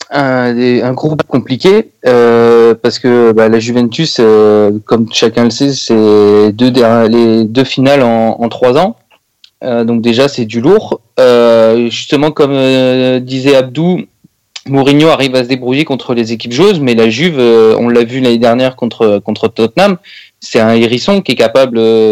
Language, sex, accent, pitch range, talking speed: French, male, French, 115-140 Hz, 170 wpm